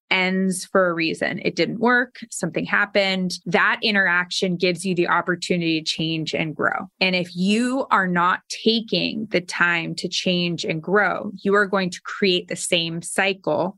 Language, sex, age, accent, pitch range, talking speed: English, female, 20-39, American, 165-200 Hz, 170 wpm